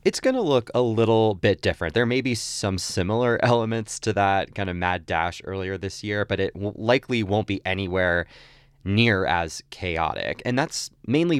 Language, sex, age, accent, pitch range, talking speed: English, male, 20-39, American, 90-115 Hz, 190 wpm